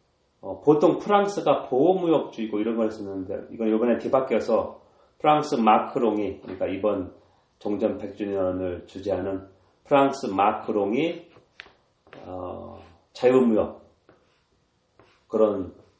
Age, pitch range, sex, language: 40-59, 95-130 Hz, male, Korean